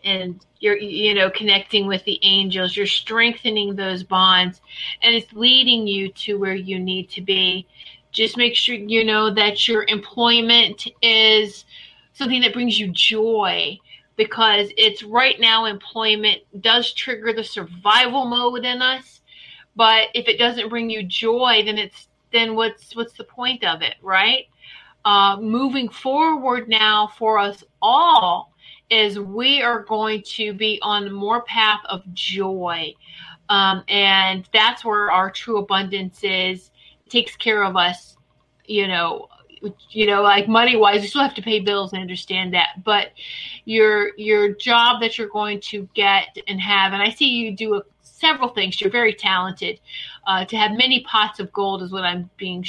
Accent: American